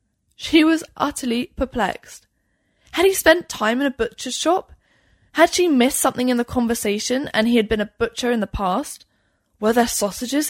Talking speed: 175 wpm